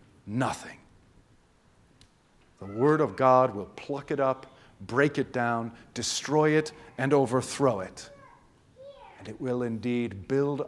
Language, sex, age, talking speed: English, male, 50-69, 125 wpm